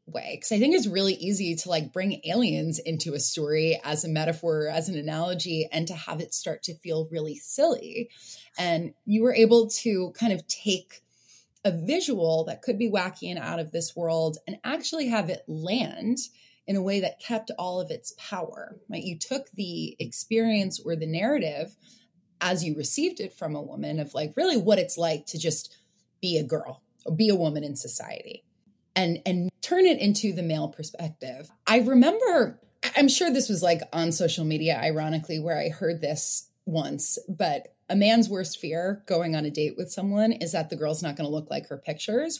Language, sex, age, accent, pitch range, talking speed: English, female, 20-39, American, 160-230 Hz, 200 wpm